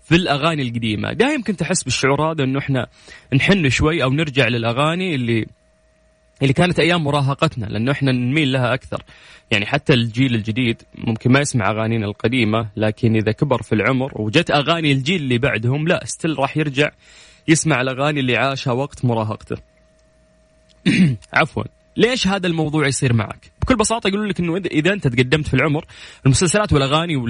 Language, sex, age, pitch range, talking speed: Arabic, male, 20-39, 115-155 Hz, 160 wpm